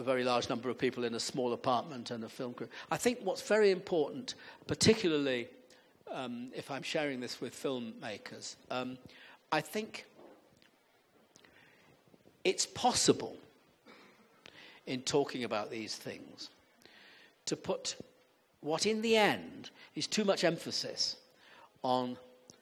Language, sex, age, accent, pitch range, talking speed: English, male, 60-79, British, 130-195 Hz, 125 wpm